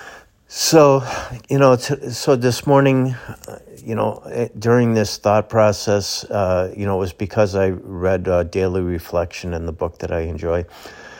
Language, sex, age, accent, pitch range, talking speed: English, male, 50-69, American, 85-110 Hz, 170 wpm